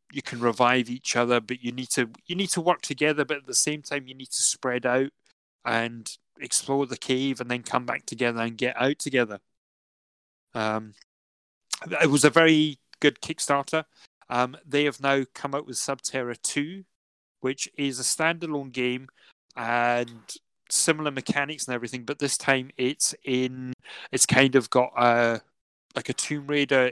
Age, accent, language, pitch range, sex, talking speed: 30-49, British, English, 120-140 Hz, male, 170 wpm